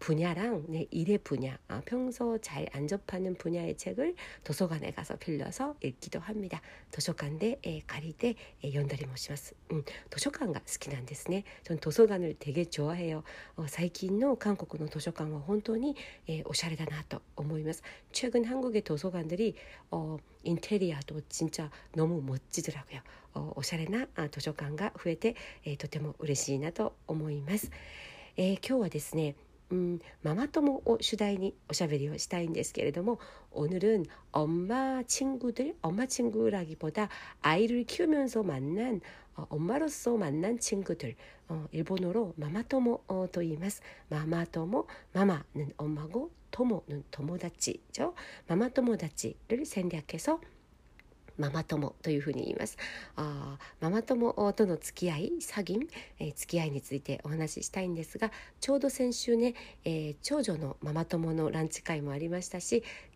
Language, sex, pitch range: Korean, female, 155-225 Hz